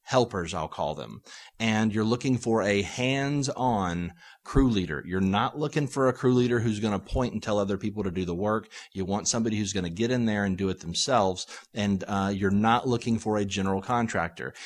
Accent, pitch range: American, 95-115 Hz